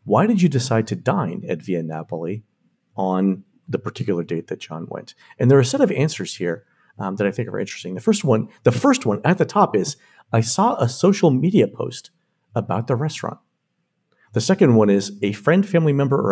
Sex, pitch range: male, 110-150 Hz